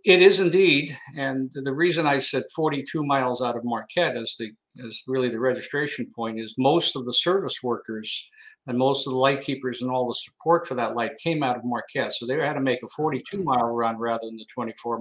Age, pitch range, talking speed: 50-69, 125-155 Hz, 225 wpm